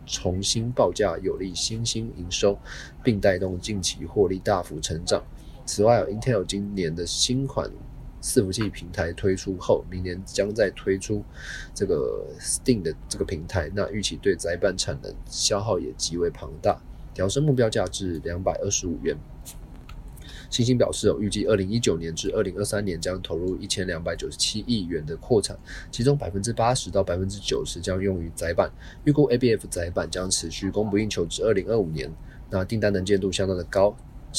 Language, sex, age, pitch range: Chinese, male, 20-39, 90-115 Hz